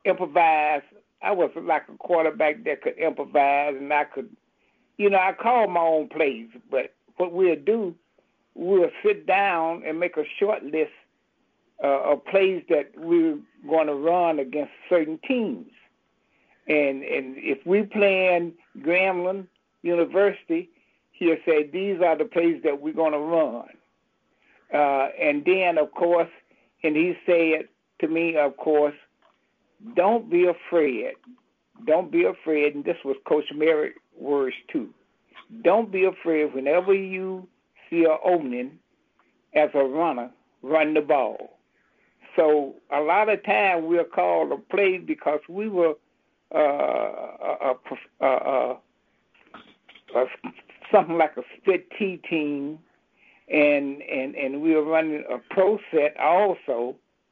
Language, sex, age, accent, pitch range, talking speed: English, male, 60-79, American, 150-195 Hz, 140 wpm